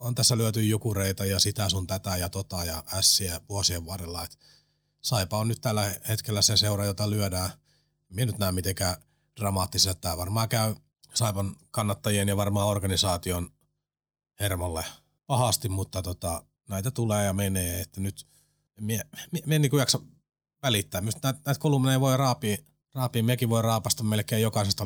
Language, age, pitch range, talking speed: Finnish, 30-49, 95-120 Hz, 150 wpm